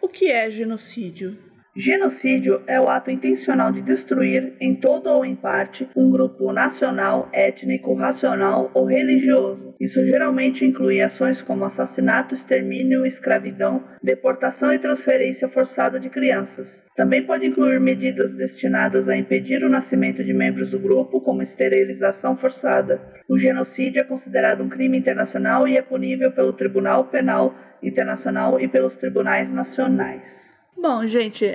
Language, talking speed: Portuguese, 140 wpm